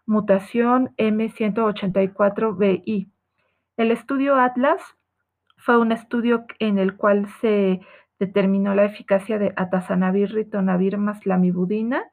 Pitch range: 200-225 Hz